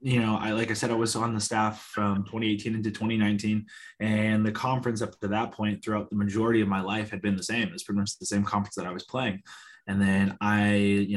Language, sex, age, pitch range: English, male, 20-39, 100-115 Hz